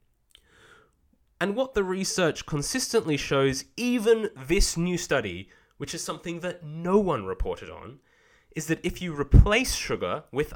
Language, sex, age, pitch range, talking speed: English, male, 20-39, 110-185 Hz, 140 wpm